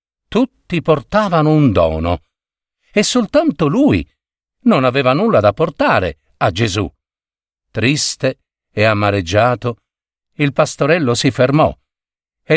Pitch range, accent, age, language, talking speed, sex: 95-160 Hz, native, 50-69, Italian, 105 wpm, male